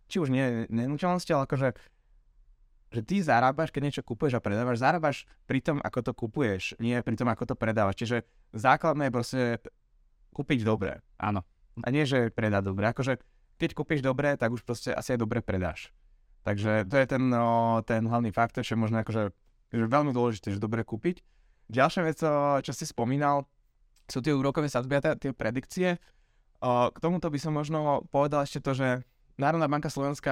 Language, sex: Slovak, male